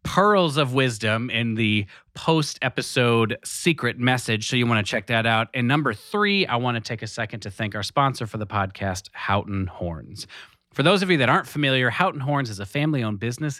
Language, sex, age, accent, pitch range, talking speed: English, male, 30-49, American, 105-145 Hz, 205 wpm